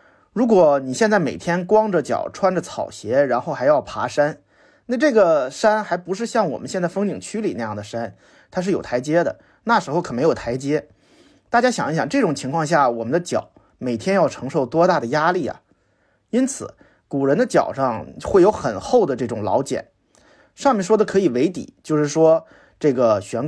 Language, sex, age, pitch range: Chinese, male, 30-49, 140-215 Hz